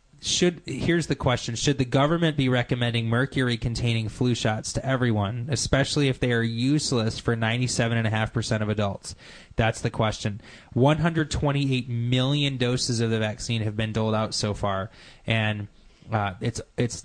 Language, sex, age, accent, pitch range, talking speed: English, male, 20-39, American, 110-130 Hz, 150 wpm